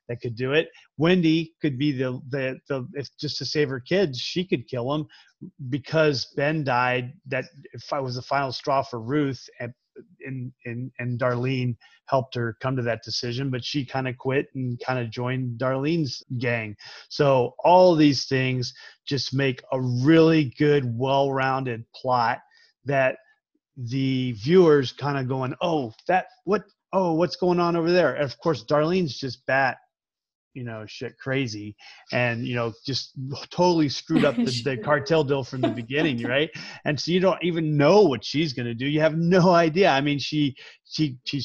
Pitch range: 125-155 Hz